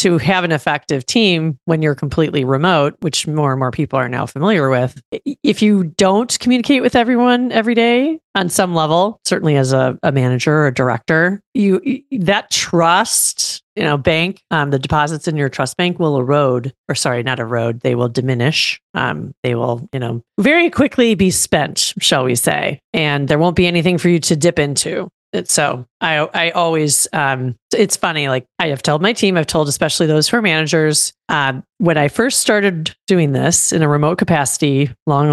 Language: English